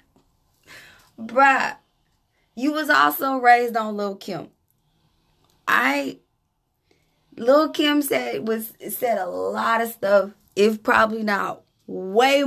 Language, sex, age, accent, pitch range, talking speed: English, female, 20-39, American, 200-265 Hz, 100 wpm